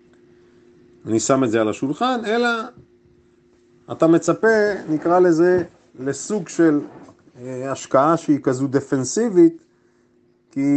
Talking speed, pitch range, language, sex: 100 wpm, 120-165 Hz, Hebrew, male